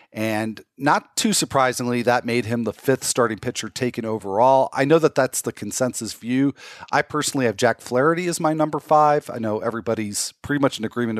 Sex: male